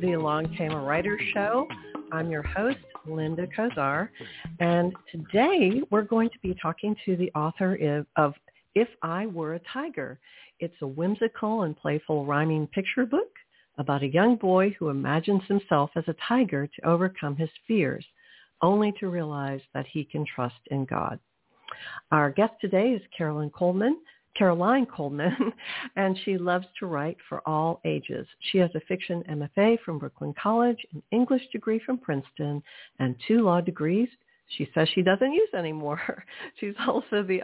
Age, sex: 60-79, female